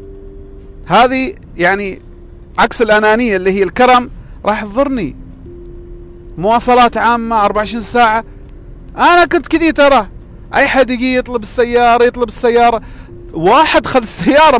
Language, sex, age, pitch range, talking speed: Arabic, male, 40-59, 205-280 Hz, 110 wpm